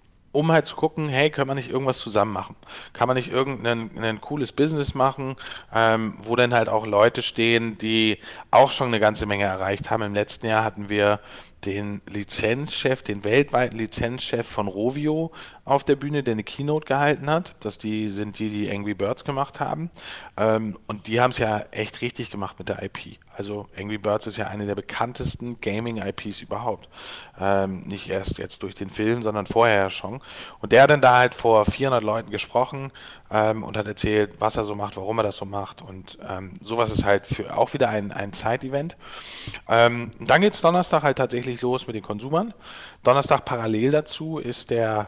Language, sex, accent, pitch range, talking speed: German, male, German, 105-125 Hz, 185 wpm